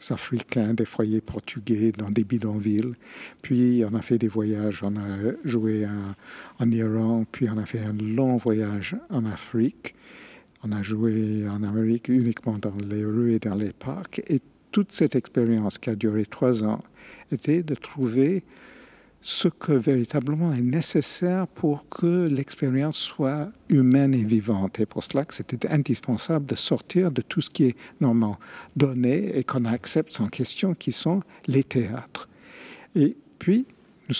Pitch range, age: 110-140 Hz, 60-79